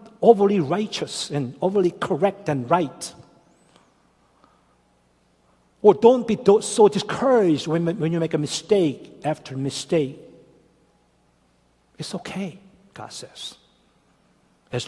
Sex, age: male, 60-79